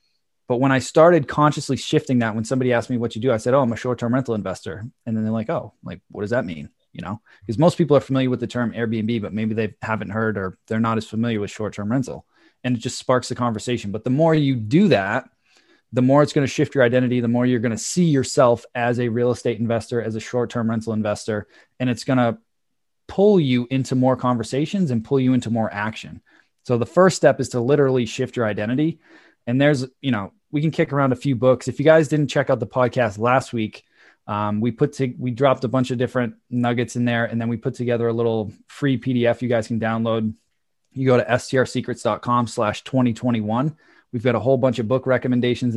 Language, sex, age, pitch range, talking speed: English, male, 20-39, 115-130 Hz, 235 wpm